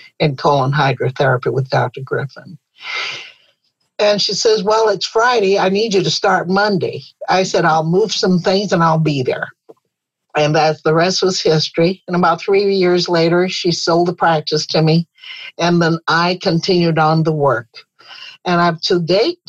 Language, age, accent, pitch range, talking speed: English, 60-79, American, 155-190 Hz, 170 wpm